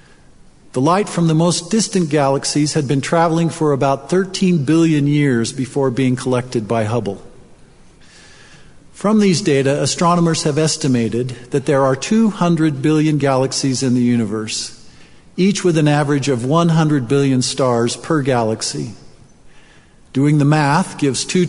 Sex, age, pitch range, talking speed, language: male, 50-69, 130-165 Hz, 140 wpm, English